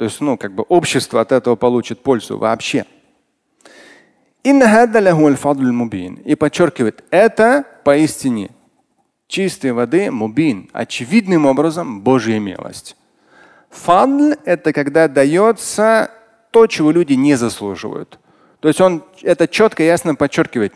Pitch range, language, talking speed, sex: 135-205 Hz, Russian, 110 wpm, male